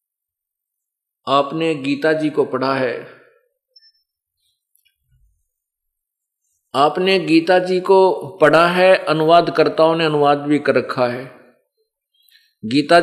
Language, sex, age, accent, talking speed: Hindi, male, 50-69, native, 90 wpm